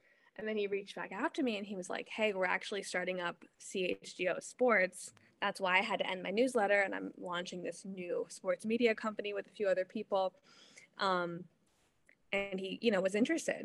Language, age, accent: English, 20-39, American